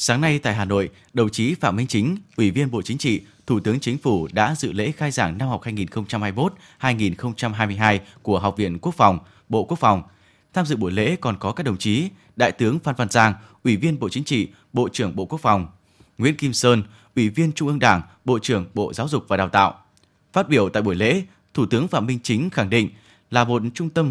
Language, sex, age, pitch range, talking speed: Vietnamese, male, 20-39, 105-145 Hz, 225 wpm